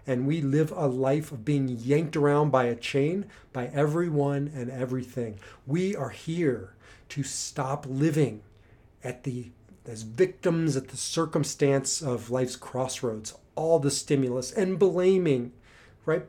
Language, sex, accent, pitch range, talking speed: English, male, American, 120-155 Hz, 135 wpm